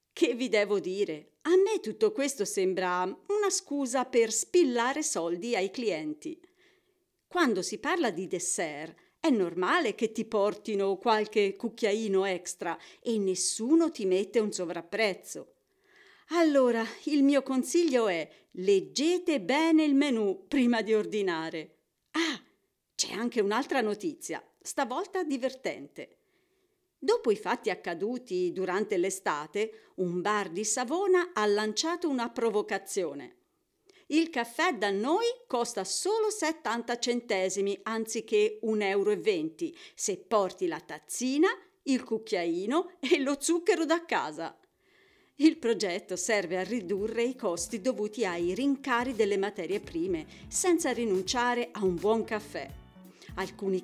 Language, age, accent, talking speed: Italian, 40-59, native, 120 wpm